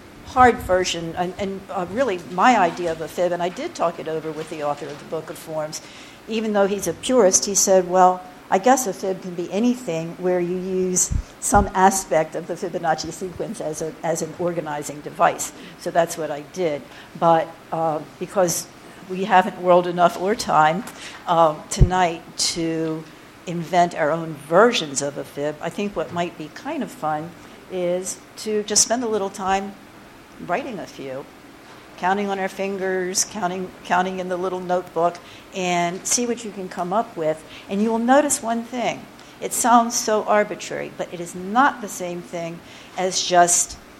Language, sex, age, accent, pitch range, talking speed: English, female, 60-79, American, 165-195 Hz, 180 wpm